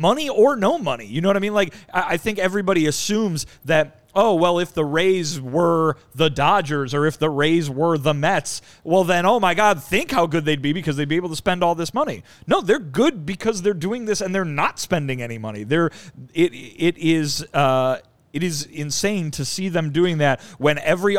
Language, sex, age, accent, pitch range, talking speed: English, male, 30-49, American, 130-175 Hz, 220 wpm